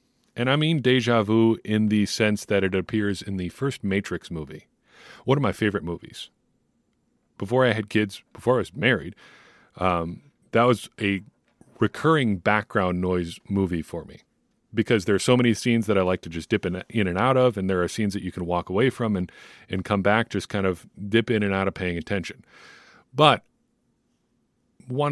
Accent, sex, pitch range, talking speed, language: American, male, 95-110 Hz, 195 wpm, English